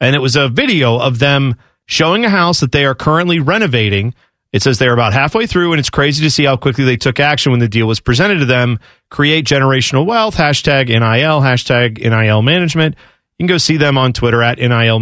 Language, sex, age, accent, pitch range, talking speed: English, male, 40-59, American, 120-160 Hz, 220 wpm